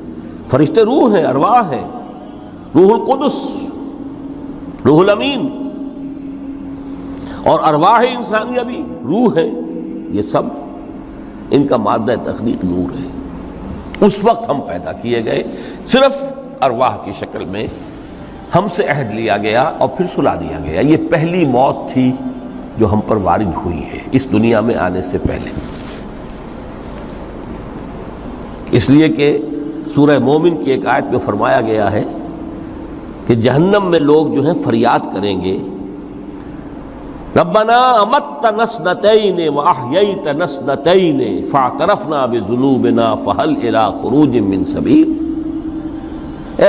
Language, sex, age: Urdu, male, 60-79